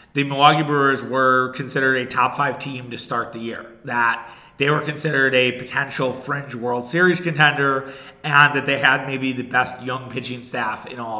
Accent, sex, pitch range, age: American, male, 125-150 Hz, 30-49